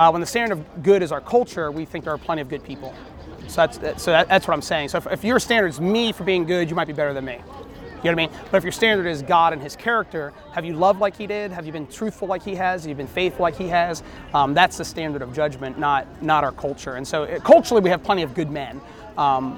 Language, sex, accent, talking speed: English, male, American, 285 wpm